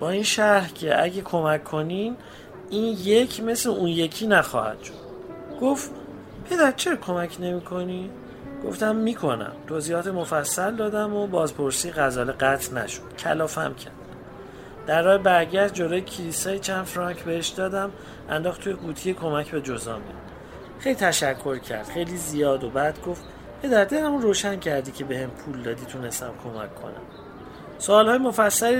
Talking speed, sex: 150 wpm, male